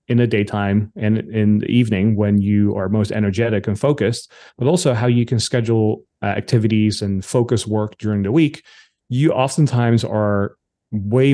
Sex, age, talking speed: male, 30-49, 170 wpm